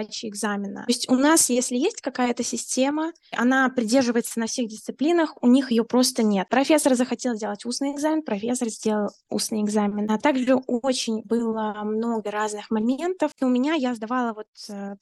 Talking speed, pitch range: 170 wpm, 225-275 Hz